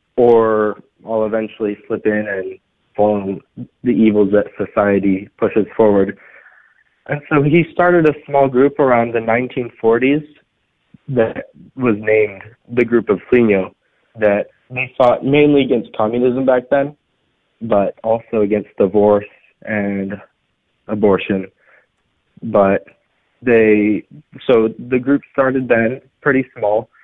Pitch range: 105-125 Hz